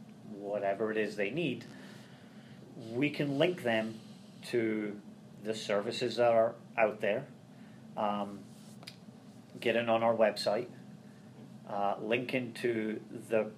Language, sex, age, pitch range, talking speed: English, male, 40-59, 110-130 Hz, 115 wpm